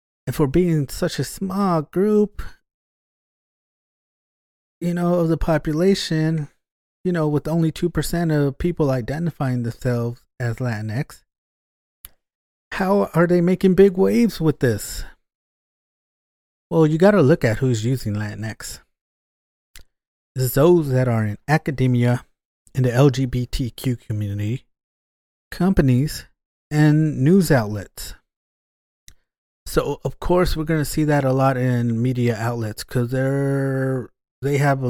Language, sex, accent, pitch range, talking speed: English, male, American, 115-160 Hz, 120 wpm